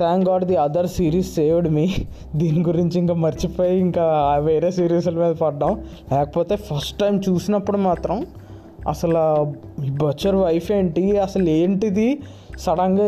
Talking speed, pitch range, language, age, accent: 135 wpm, 165-220 Hz, Telugu, 20-39, native